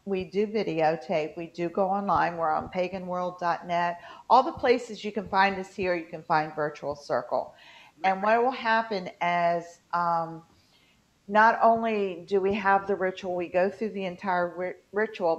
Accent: American